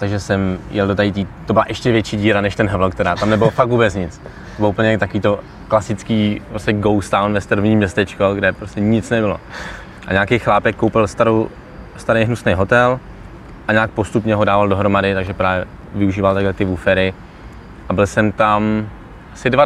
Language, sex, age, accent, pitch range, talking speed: Czech, male, 20-39, native, 100-110 Hz, 185 wpm